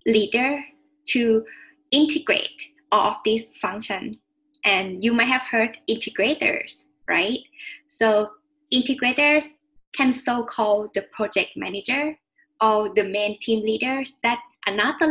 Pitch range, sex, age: 210-275 Hz, female, 10-29